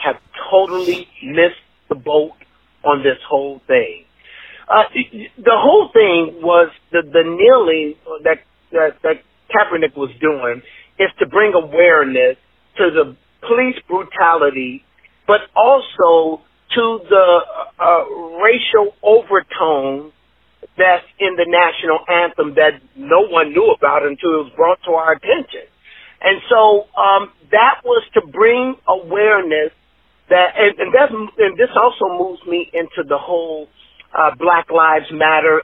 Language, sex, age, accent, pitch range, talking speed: English, male, 50-69, American, 155-250 Hz, 130 wpm